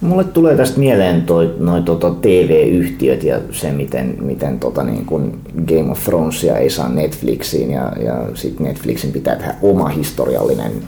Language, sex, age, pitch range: Finnish, male, 30-49, 80-100 Hz